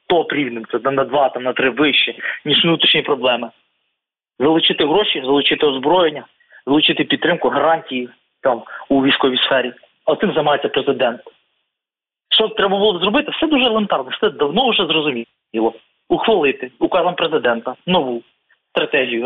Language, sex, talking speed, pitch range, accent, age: Ukrainian, male, 130 wpm, 135-175 Hz, native, 20-39